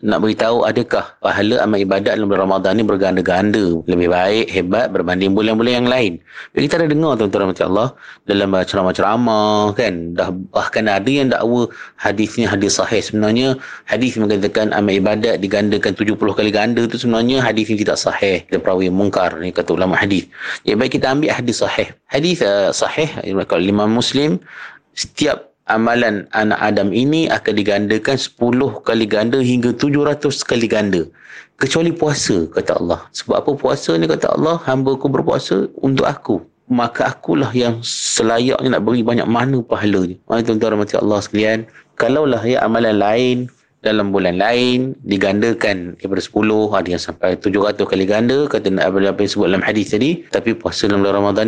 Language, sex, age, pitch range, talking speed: Malay, male, 30-49, 100-125 Hz, 165 wpm